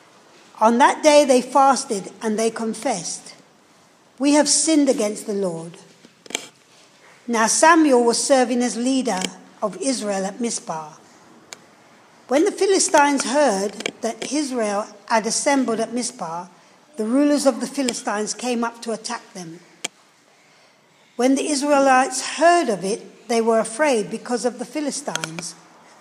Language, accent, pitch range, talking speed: English, British, 220-275 Hz, 130 wpm